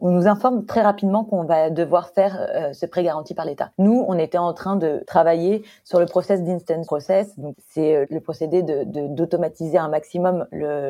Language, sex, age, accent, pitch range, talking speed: French, female, 30-49, French, 165-195 Hz, 210 wpm